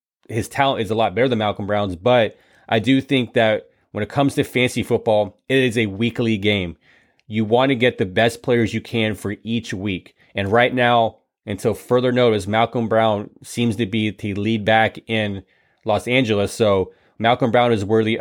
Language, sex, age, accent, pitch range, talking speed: English, male, 20-39, American, 105-115 Hz, 195 wpm